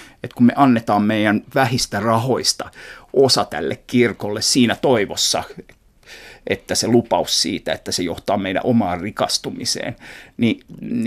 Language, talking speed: Finnish, 125 wpm